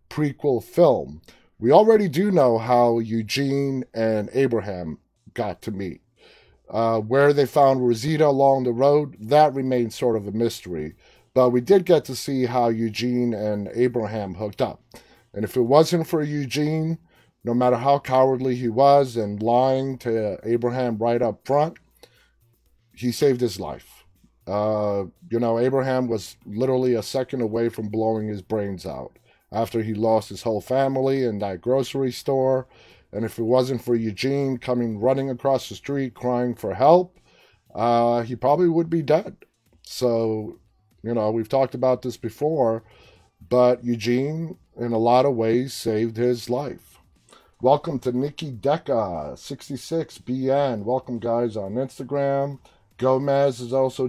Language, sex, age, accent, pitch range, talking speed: English, male, 30-49, American, 115-135 Hz, 150 wpm